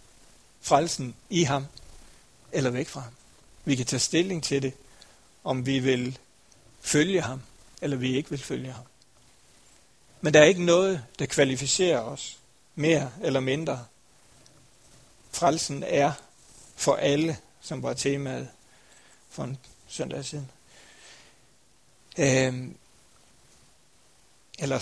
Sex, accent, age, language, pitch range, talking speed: male, native, 60-79, Danish, 130-150 Hz, 115 wpm